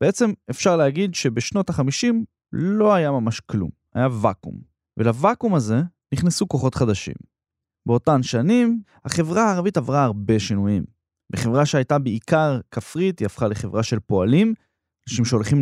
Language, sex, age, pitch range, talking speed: Hebrew, male, 20-39, 115-180 Hz, 130 wpm